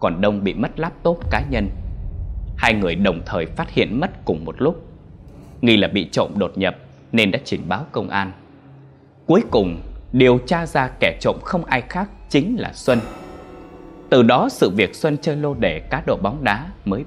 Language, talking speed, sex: Vietnamese, 195 wpm, male